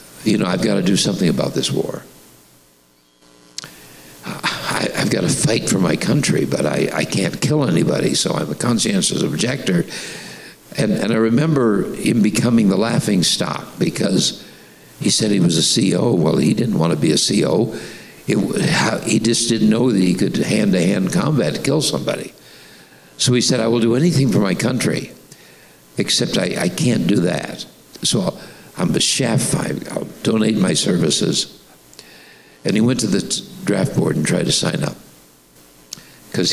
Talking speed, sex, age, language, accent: 170 wpm, male, 60-79, English, American